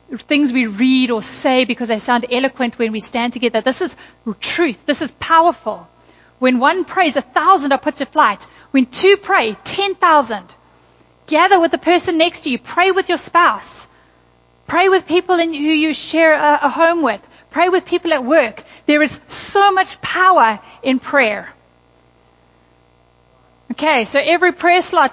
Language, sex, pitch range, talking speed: English, female, 225-300 Hz, 165 wpm